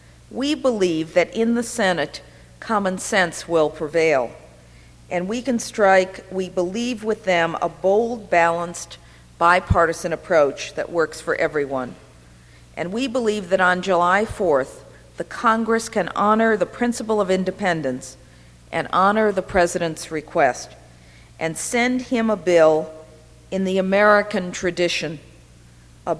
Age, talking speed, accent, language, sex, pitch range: 50-69, 130 wpm, American, English, female, 140-215 Hz